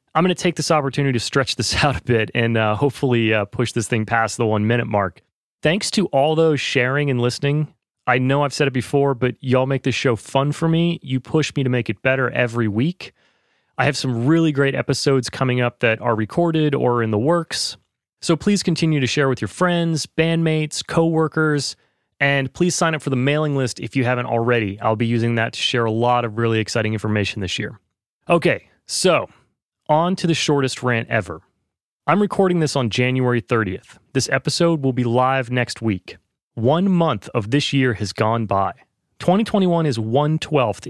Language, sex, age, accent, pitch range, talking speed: English, male, 30-49, American, 115-155 Hz, 200 wpm